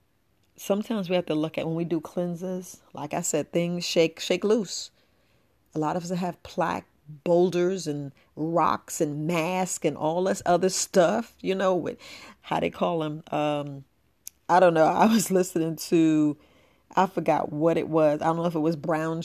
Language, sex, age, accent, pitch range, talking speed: English, female, 40-59, American, 155-180 Hz, 185 wpm